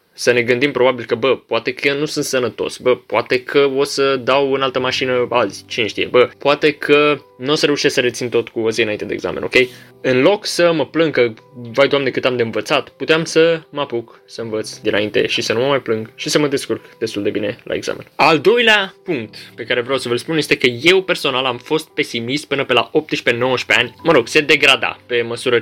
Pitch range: 125-165 Hz